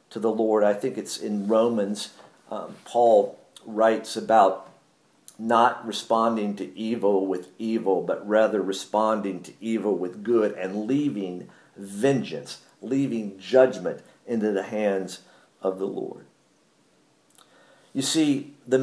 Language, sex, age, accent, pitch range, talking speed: English, male, 50-69, American, 110-155 Hz, 125 wpm